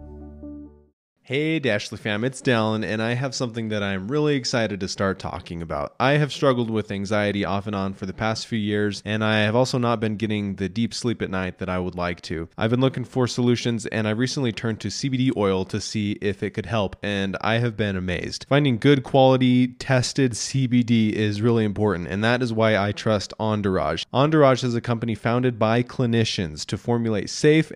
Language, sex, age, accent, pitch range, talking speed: English, male, 20-39, American, 100-125 Hz, 205 wpm